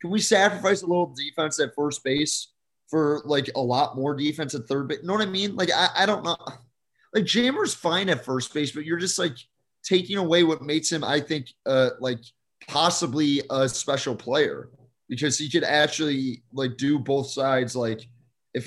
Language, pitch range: English, 130-165 Hz